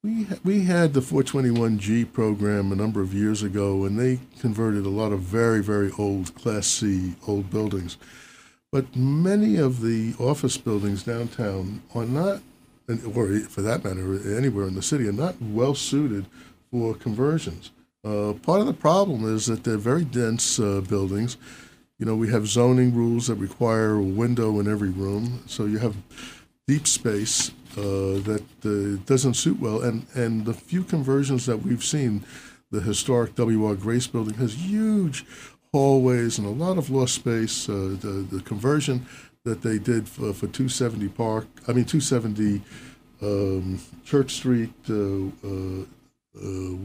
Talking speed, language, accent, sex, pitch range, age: 160 wpm, English, American, male, 105-130 Hz, 60-79